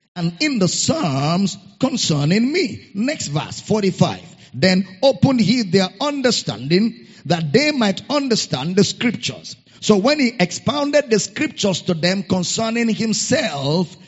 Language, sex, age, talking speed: English, male, 50-69, 130 wpm